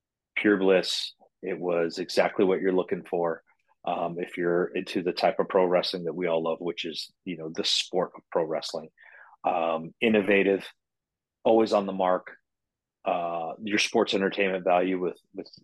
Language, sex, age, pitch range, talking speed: English, male, 30-49, 85-105 Hz, 170 wpm